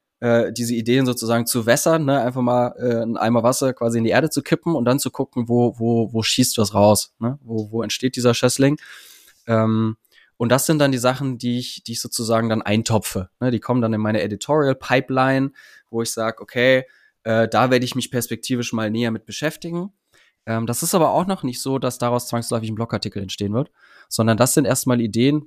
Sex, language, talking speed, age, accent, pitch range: male, German, 210 wpm, 20-39, German, 110-135 Hz